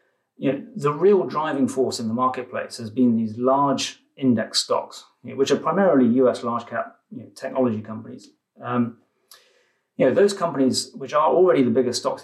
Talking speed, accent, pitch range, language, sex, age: 175 wpm, British, 115-140 Hz, English, male, 30-49